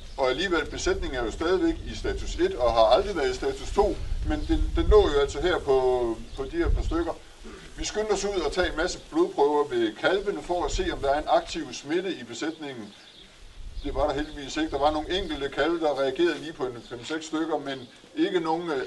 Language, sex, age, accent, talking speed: Danish, male, 60-79, native, 225 wpm